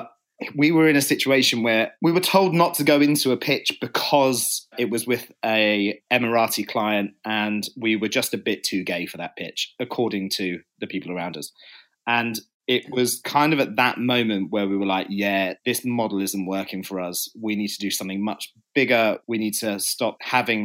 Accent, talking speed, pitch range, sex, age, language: British, 205 wpm, 105-120 Hz, male, 30-49, English